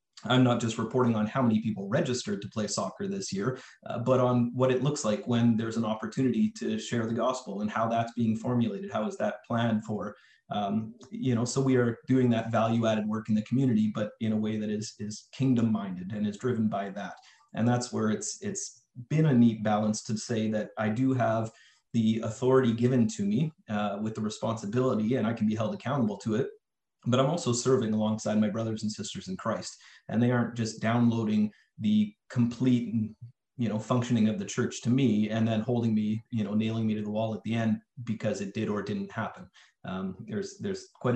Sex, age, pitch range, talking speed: male, 30-49, 110-125 Hz, 215 wpm